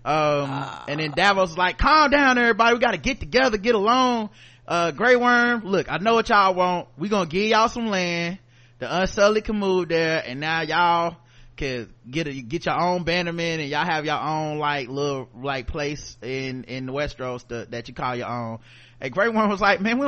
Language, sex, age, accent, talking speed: English, male, 20-39, American, 210 wpm